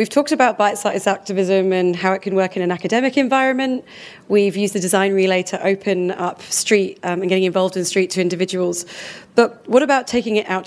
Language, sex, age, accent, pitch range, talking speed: English, female, 30-49, British, 185-220 Hz, 210 wpm